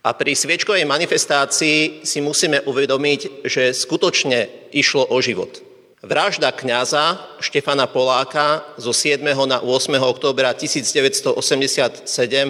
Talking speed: 105 wpm